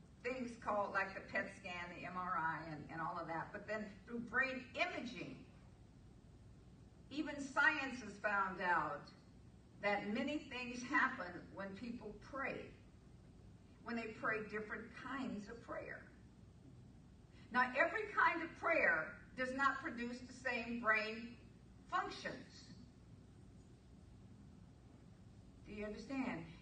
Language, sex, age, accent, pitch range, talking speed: English, female, 50-69, American, 210-270 Hz, 115 wpm